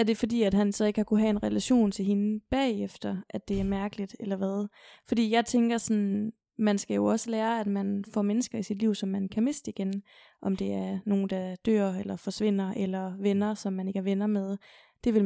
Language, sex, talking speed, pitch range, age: Danish, female, 235 wpm, 195-215 Hz, 20-39